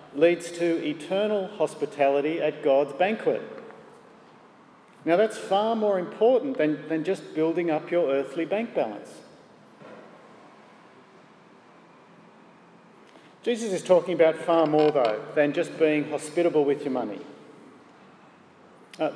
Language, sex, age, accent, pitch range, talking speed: English, male, 50-69, Australian, 150-230 Hz, 115 wpm